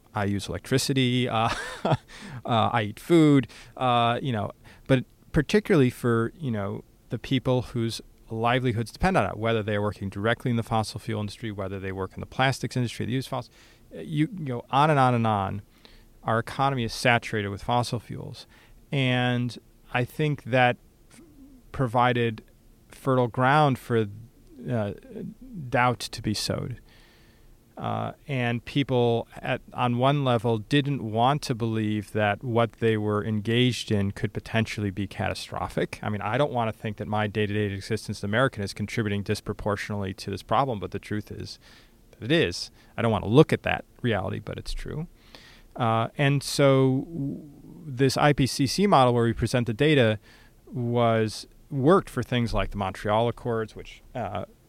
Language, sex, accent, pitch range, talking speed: English, male, American, 110-130 Hz, 165 wpm